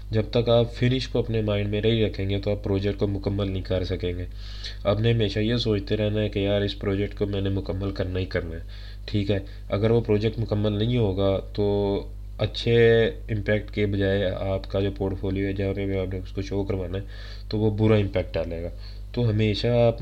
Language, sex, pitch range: English, male, 95-105 Hz